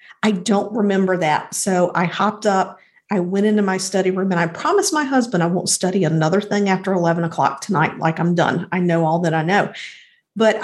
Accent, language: American, English